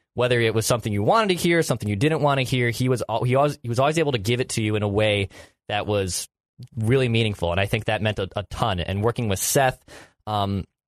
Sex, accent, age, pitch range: male, American, 20-39, 105-120 Hz